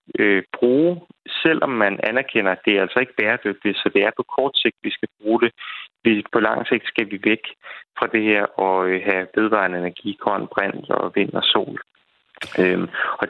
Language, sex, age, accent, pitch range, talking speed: Danish, male, 30-49, native, 95-115 Hz, 175 wpm